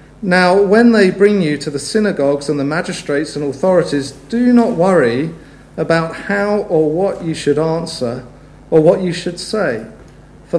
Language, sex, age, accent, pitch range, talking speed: English, male, 50-69, British, 140-190 Hz, 165 wpm